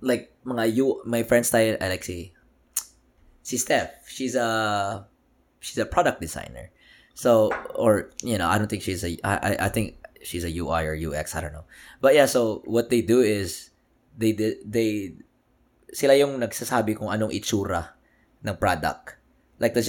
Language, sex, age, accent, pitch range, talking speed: Filipino, male, 20-39, native, 95-120 Hz, 170 wpm